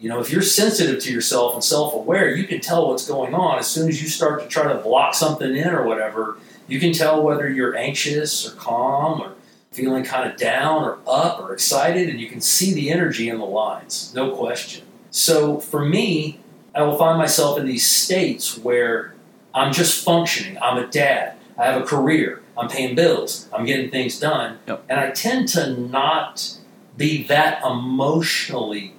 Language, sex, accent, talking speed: English, male, American, 190 wpm